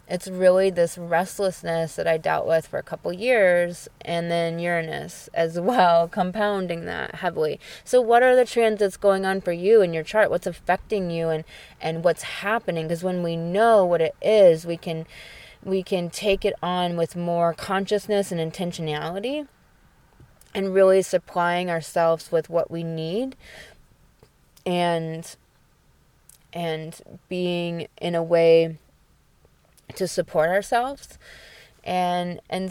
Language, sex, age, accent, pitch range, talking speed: English, female, 20-39, American, 170-200 Hz, 145 wpm